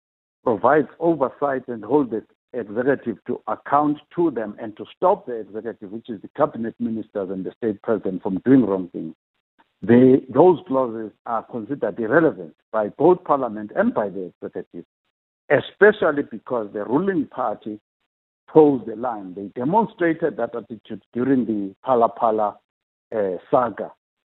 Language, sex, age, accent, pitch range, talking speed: English, male, 60-79, South African, 110-155 Hz, 145 wpm